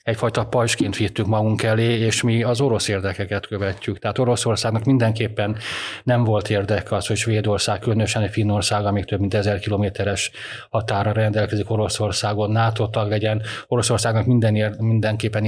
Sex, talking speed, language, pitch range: male, 145 wpm, Hungarian, 105-115 Hz